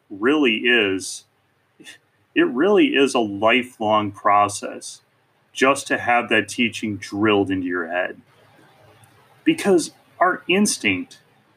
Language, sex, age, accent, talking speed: English, male, 30-49, American, 105 wpm